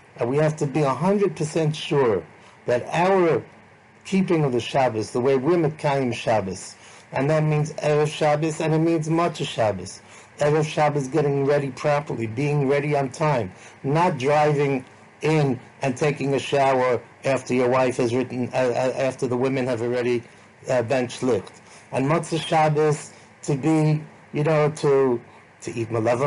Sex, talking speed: male, 155 wpm